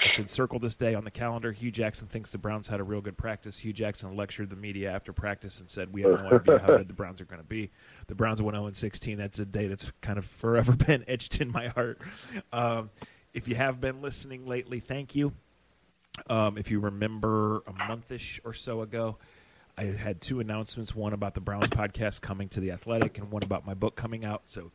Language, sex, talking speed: English, male, 230 wpm